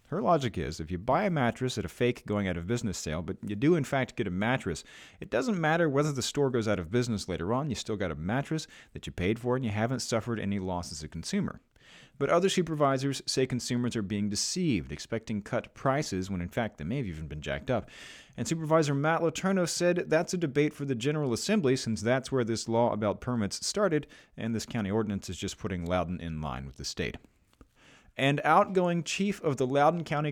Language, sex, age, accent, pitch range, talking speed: English, male, 40-59, American, 100-140 Hz, 220 wpm